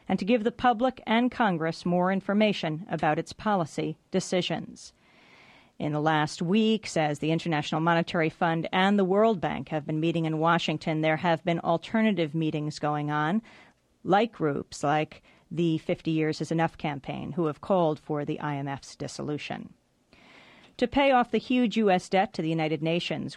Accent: American